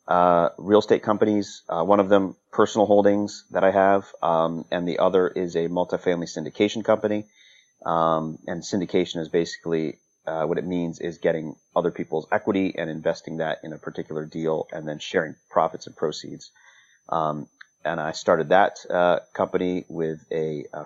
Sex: male